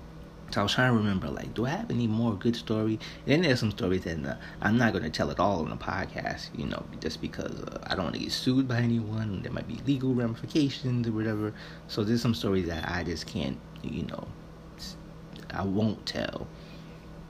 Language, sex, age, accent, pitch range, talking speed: English, male, 30-49, American, 95-115 Hz, 225 wpm